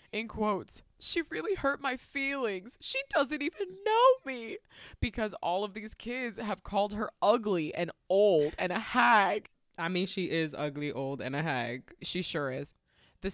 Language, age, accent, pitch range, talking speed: English, 20-39, American, 170-235 Hz, 175 wpm